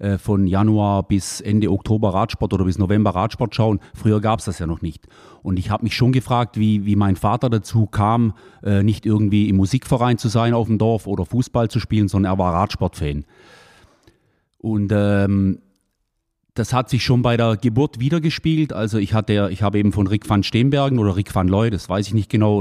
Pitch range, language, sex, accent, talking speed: 100-120 Hz, German, male, German, 200 wpm